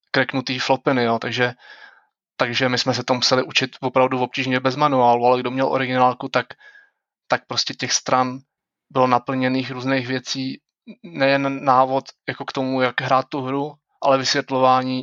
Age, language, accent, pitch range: 20-39, Czech, native, 130-145 Hz